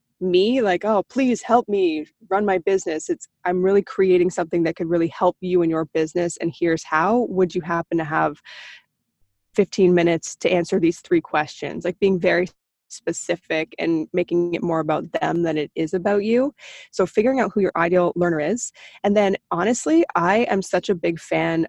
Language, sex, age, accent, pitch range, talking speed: English, female, 20-39, American, 170-210 Hz, 190 wpm